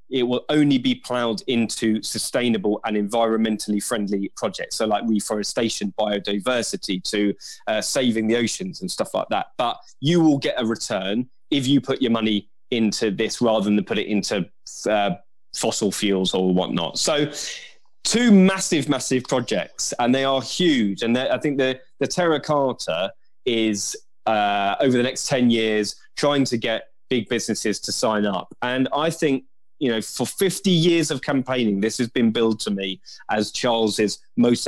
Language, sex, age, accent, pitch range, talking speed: English, male, 20-39, British, 105-135 Hz, 170 wpm